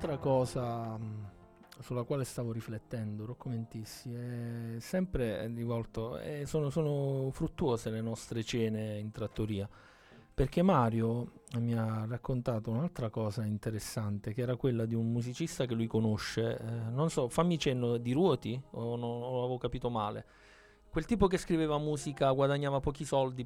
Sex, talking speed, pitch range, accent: male, 150 wpm, 115-140 Hz, native